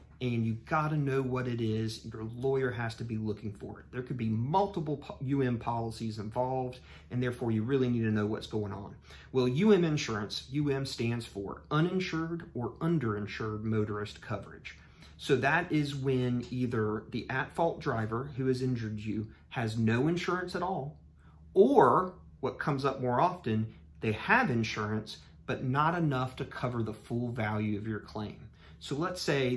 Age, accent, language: 40-59, American, English